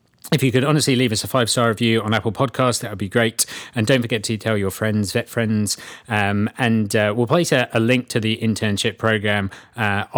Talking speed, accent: 230 wpm, British